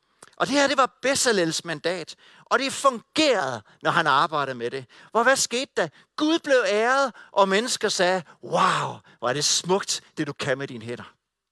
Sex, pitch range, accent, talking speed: male, 175-240 Hz, native, 190 wpm